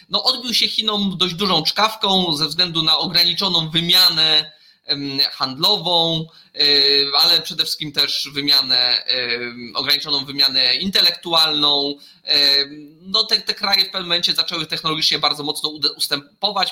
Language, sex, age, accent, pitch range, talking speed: Polish, male, 20-39, native, 145-185 Hz, 120 wpm